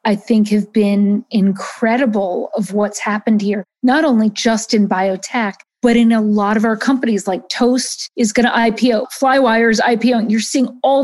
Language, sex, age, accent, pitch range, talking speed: English, female, 40-59, American, 210-245 Hz, 180 wpm